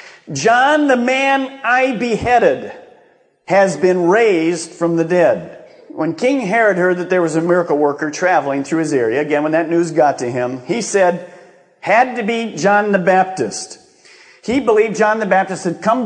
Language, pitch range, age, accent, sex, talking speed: English, 180-255 Hz, 50-69, American, male, 175 wpm